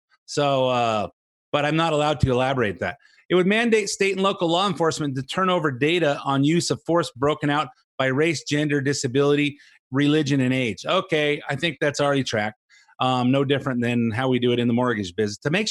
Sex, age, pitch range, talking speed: male, 30-49, 125-160 Hz, 205 wpm